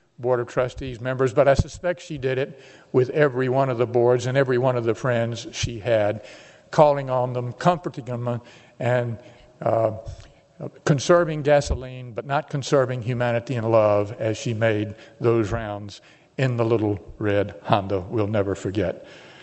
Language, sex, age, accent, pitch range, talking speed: English, male, 50-69, American, 110-140 Hz, 160 wpm